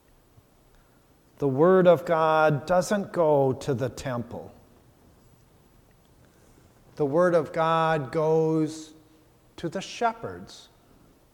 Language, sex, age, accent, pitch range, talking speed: English, male, 50-69, American, 135-185 Hz, 90 wpm